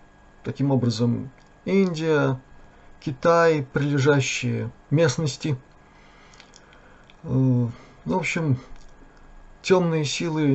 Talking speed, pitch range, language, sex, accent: 55 wpm, 105-150 Hz, Russian, male, native